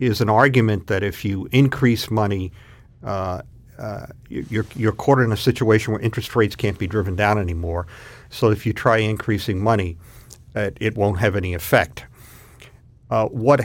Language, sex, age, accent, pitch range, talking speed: English, male, 50-69, American, 100-120 Hz, 165 wpm